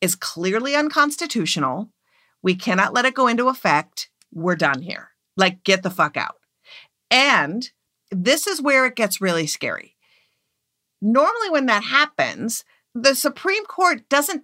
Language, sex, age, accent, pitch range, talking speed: English, female, 50-69, American, 185-275 Hz, 140 wpm